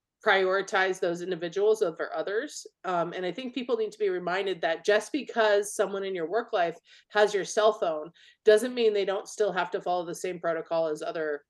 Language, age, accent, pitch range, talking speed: English, 30-49, American, 175-245 Hz, 205 wpm